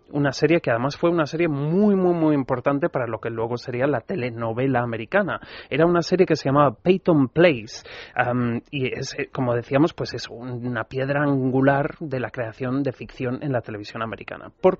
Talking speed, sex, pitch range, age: 190 wpm, male, 125-160 Hz, 30-49